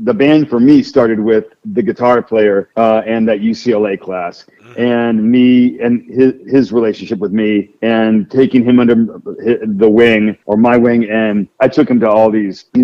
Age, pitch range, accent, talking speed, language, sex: 40-59, 110-125 Hz, American, 180 wpm, English, male